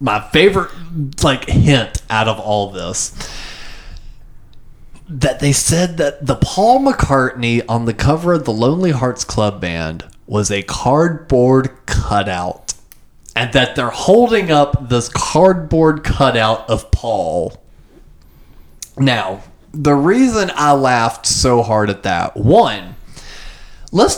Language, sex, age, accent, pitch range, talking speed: English, male, 20-39, American, 115-185 Hz, 120 wpm